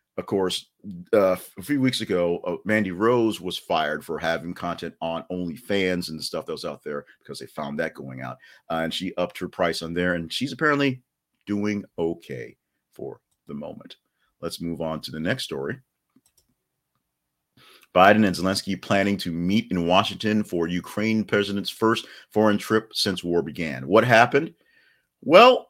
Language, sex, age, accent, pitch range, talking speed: English, male, 50-69, American, 85-110 Hz, 170 wpm